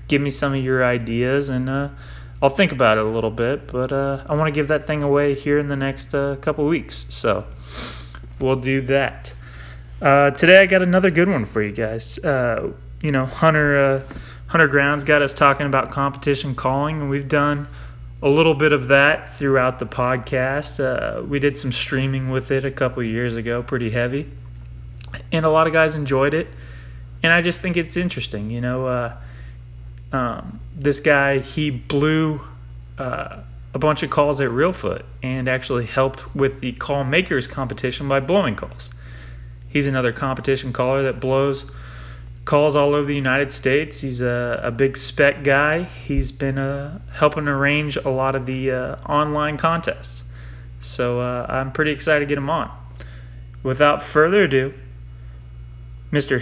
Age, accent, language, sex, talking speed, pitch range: 20-39, American, English, male, 175 wpm, 110-145 Hz